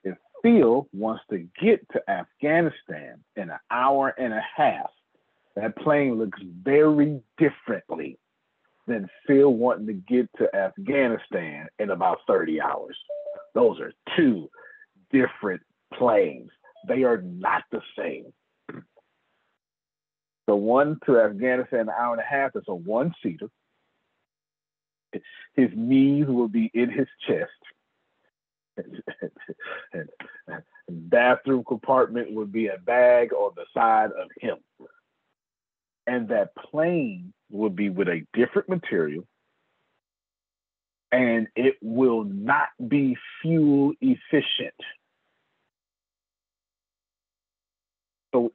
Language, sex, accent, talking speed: English, male, American, 105 wpm